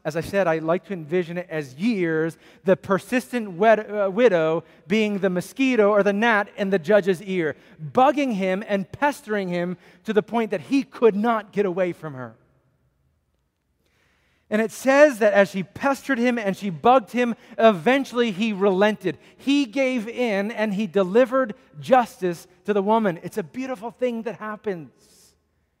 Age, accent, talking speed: 30-49, American, 165 wpm